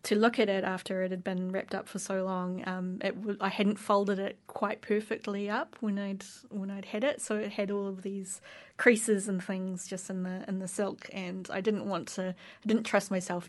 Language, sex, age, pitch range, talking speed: English, female, 20-39, 185-210 Hz, 235 wpm